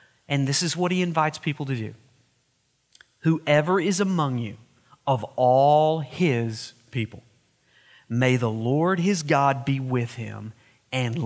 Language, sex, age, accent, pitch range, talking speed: English, male, 40-59, American, 130-180 Hz, 140 wpm